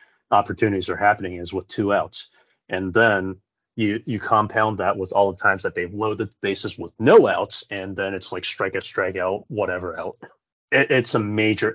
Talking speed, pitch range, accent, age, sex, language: 200 wpm, 95-115 Hz, American, 30-49, male, English